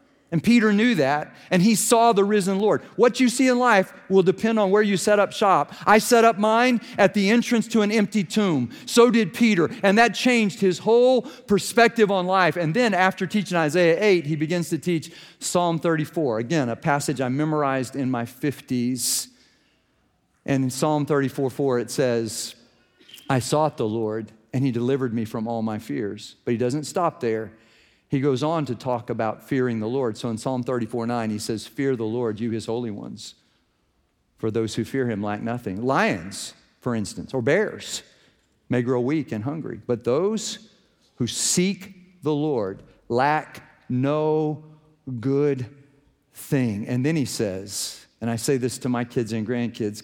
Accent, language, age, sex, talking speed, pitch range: American, English, 50-69, male, 180 wpm, 120-185 Hz